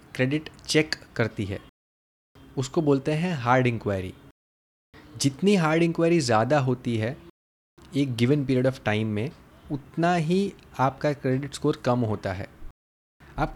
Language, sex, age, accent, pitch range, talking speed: Hindi, male, 30-49, native, 115-160 Hz, 135 wpm